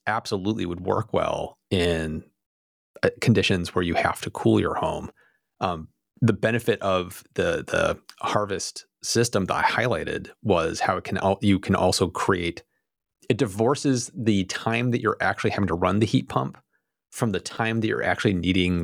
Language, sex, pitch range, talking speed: English, male, 90-105 Hz, 170 wpm